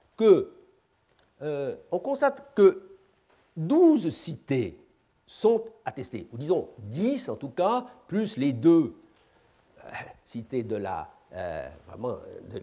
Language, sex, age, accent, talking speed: French, male, 60-79, French, 120 wpm